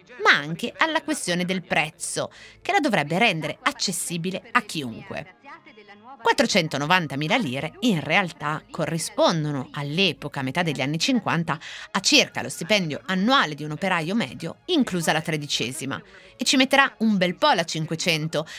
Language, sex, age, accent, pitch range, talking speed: Italian, female, 30-49, native, 150-225 Hz, 140 wpm